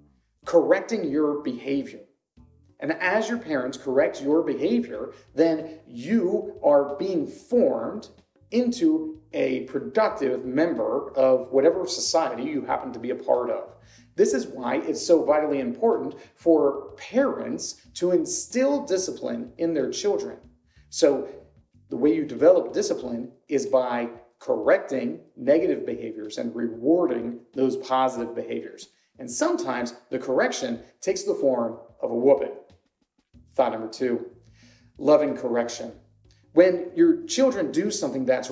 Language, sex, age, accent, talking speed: English, male, 40-59, American, 125 wpm